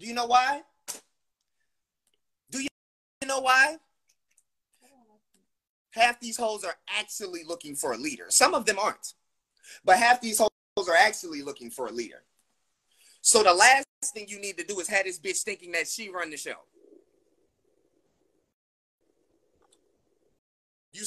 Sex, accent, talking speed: male, American, 140 wpm